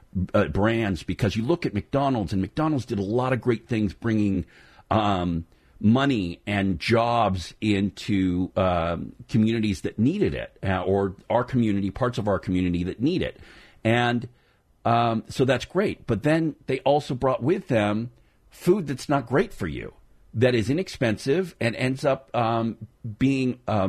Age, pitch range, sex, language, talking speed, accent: 50-69, 100-130 Hz, male, English, 160 wpm, American